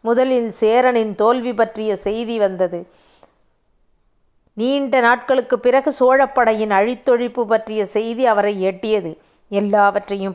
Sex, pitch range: female, 205-250 Hz